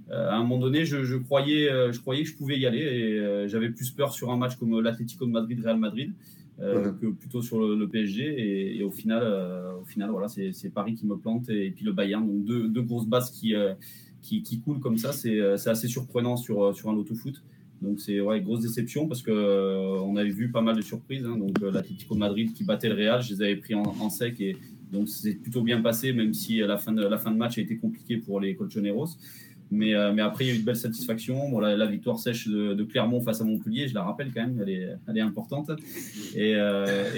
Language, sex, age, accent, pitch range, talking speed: French, male, 20-39, French, 105-125 Hz, 255 wpm